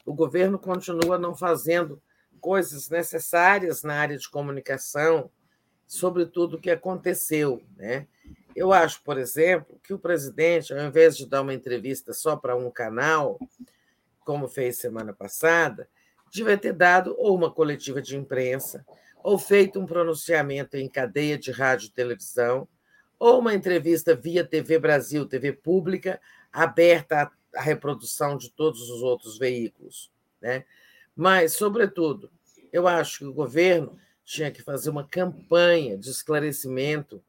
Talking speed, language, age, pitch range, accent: 140 wpm, Portuguese, 50-69, 135-175 Hz, Brazilian